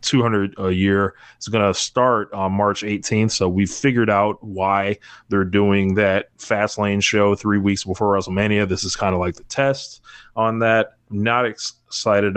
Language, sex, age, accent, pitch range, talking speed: English, male, 30-49, American, 95-115 Hz, 170 wpm